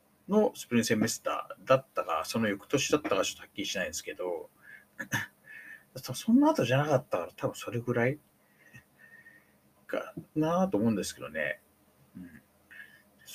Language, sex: Japanese, male